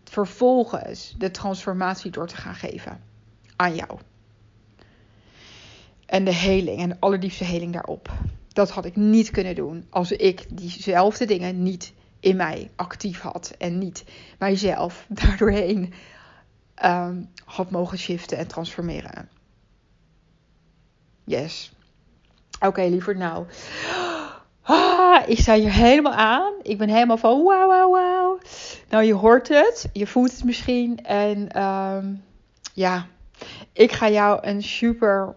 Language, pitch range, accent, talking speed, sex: Dutch, 175-210 Hz, Dutch, 125 wpm, female